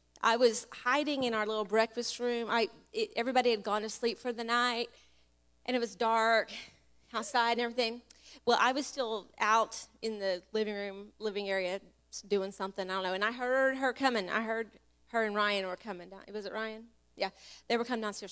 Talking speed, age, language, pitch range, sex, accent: 205 wpm, 30-49, English, 185-240 Hz, female, American